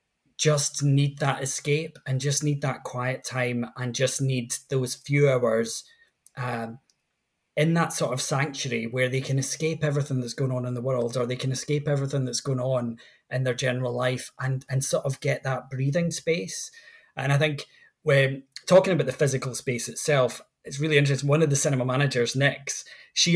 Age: 20-39